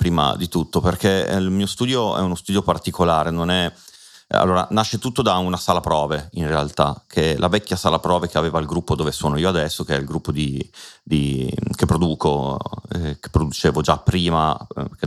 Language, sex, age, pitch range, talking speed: Italian, male, 30-49, 80-100 Hz, 205 wpm